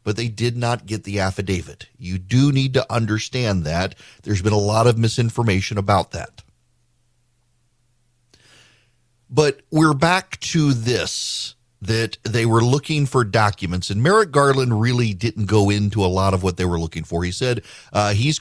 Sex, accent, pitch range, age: male, American, 105-130 Hz, 40-59